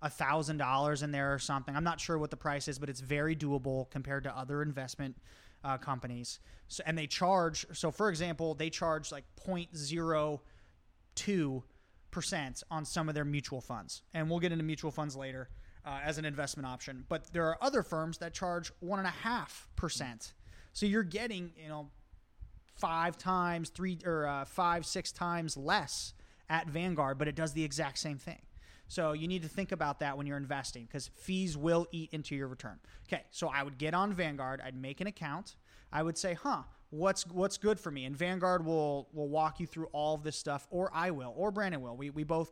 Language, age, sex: English, 30-49, male